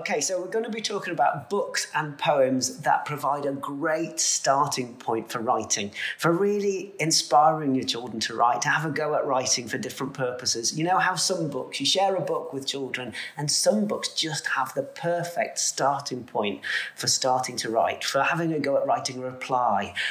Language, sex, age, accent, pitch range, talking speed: English, male, 30-49, British, 135-175 Hz, 200 wpm